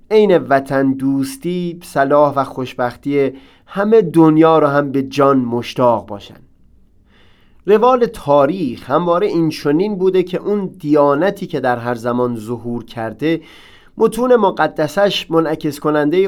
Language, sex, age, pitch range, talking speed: Persian, male, 30-49, 130-175 Hz, 120 wpm